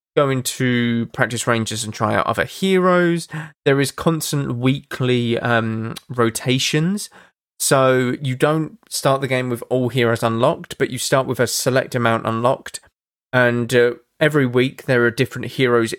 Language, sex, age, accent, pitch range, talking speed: English, male, 20-39, British, 115-135 Hz, 155 wpm